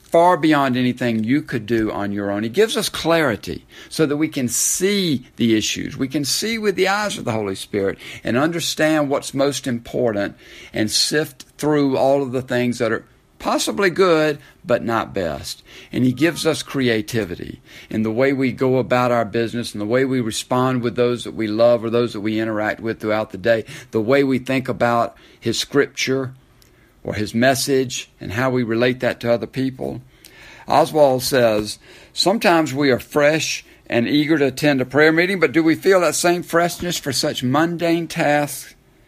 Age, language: 60-79, English